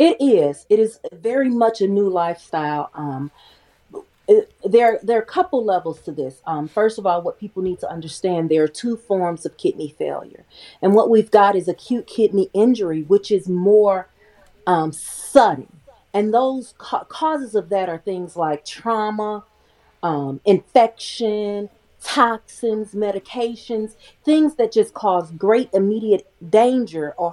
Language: English